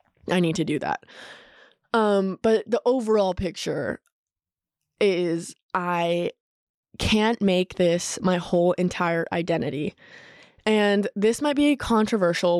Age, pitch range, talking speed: 20-39, 170-215 Hz, 120 wpm